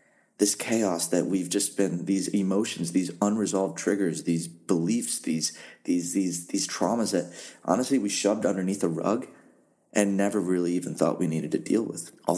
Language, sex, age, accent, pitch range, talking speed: English, male, 30-49, American, 85-105 Hz, 175 wpm